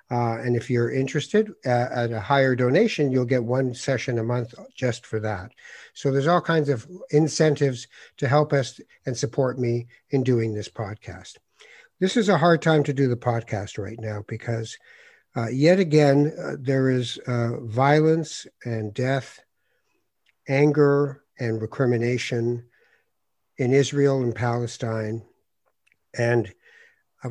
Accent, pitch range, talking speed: American, 110-140 Hz, 145 wpm